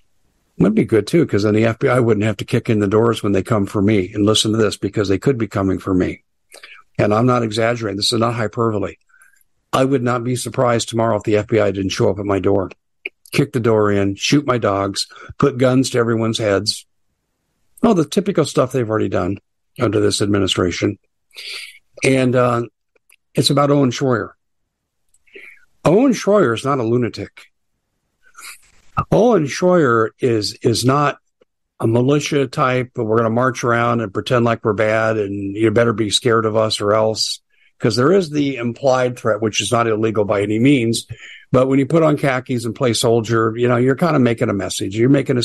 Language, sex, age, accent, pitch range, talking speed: English, male, 60-79, American, 105-130 Hz, 195 wpm